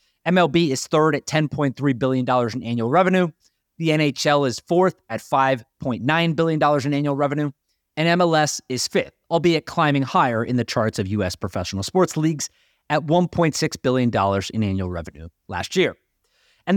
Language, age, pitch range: English, 30-49, 125-170 Hz